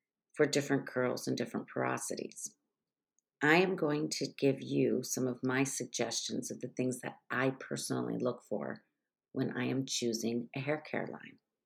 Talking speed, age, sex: 165 wpm, 50-69, female